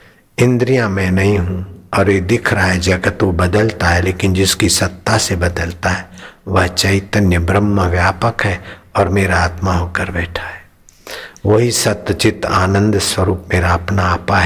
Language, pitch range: Hindi, 90-110 Hz